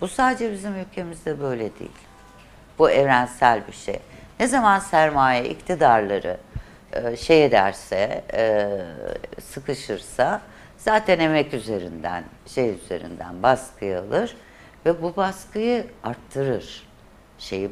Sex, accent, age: female, native, 60-79